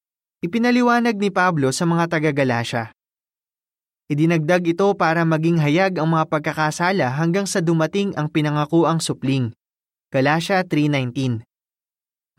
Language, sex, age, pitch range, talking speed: Filipino, male, 20-39, 145-200 Hz, 105 wpm